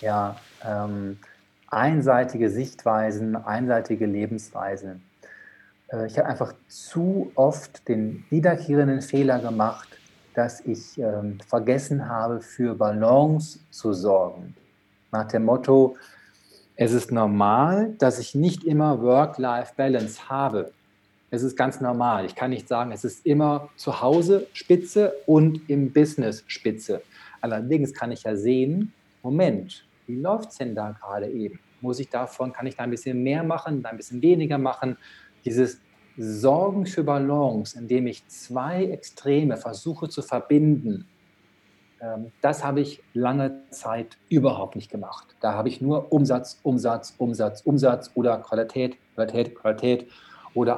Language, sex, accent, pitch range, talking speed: German, male, German, 115-145 Hz, 135 wpm